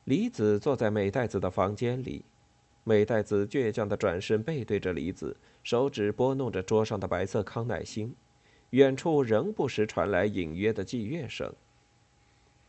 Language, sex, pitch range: Chinese, male, 110-165 Hz